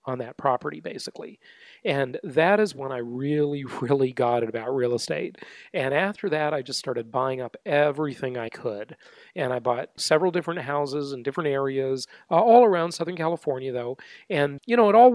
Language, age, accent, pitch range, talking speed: English, 40-59, American, 130-175 Hz, 185 wpm